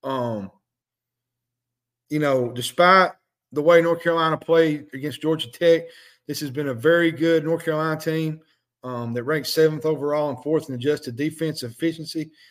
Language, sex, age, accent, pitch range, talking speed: English, male, 40-59, American, 130-165 Hz, 155 wpm